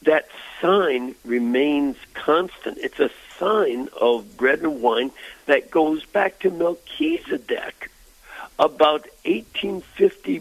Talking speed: 105 wpm